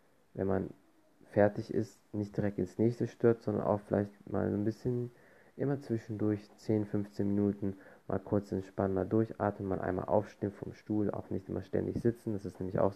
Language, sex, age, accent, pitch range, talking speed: German, male, 20-39, German, 95-110 Hz, 180 wpm